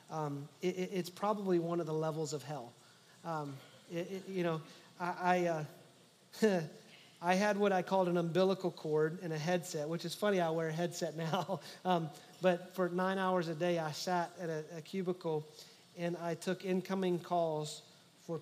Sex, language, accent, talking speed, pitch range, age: male, English, American, 185 wpm, 155-180 Hz, 40-59